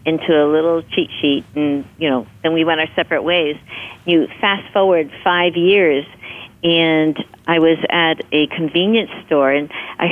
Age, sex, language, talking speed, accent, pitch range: 50-69, female, English, 165 wpm, American, 160-205 Hz